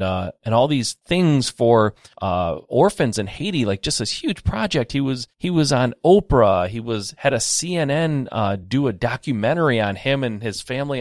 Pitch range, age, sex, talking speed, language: 105-140 Hz, 30-49, male, 190 wpm, English